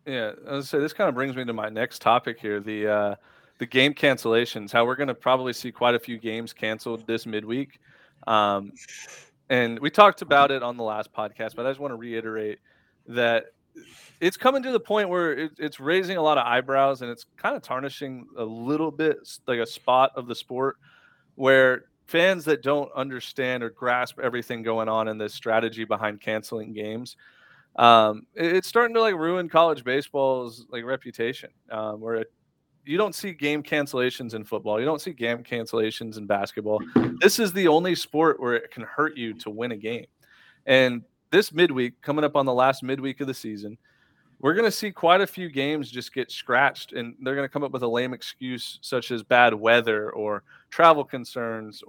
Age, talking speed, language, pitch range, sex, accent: 30-49, 200 wpm, English, 115-145 Hz, male, American